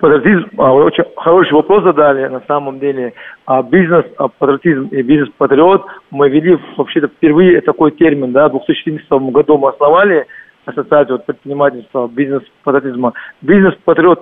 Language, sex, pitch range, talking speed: Russian, male, 135-170 Hz, 125 wpm